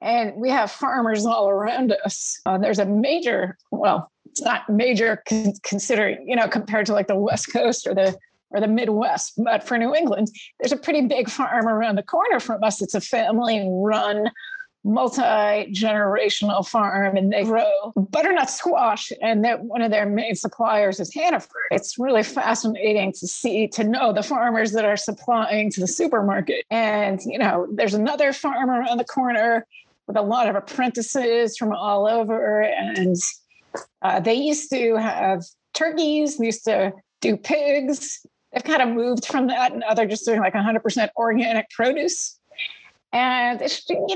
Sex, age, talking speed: female, 40-59, 165 wpm